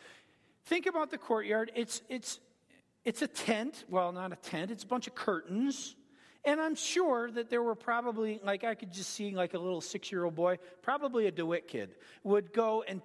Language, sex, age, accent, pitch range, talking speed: English, male, 40-59, American, 215-285 Hz, 195 wpm